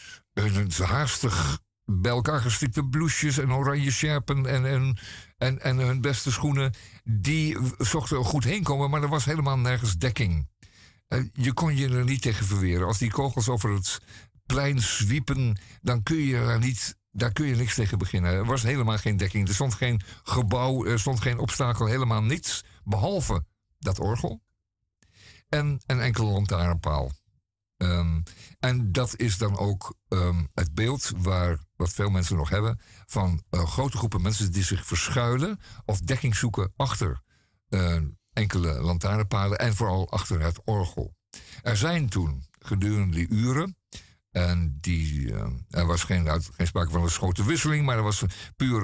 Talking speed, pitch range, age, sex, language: 160 wpm, 95-130 Hz, 50-69, male, Dutch